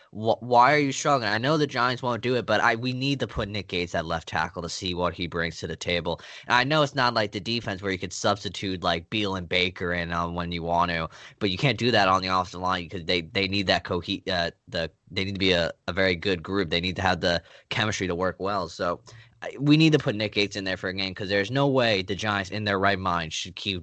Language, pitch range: English, 90-115 Hz